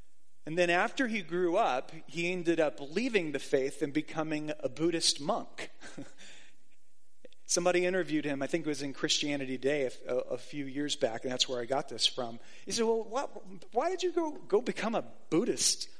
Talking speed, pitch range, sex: 190 wpm, 155-210 Hz, male